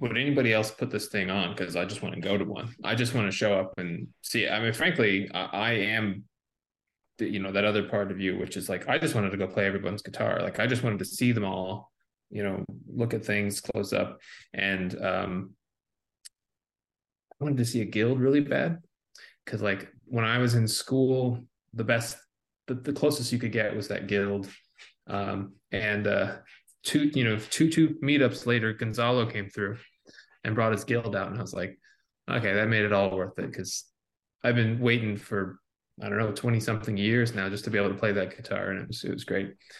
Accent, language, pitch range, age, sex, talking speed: American, English, 100-120 Hz, 20-39, male, 220 wpm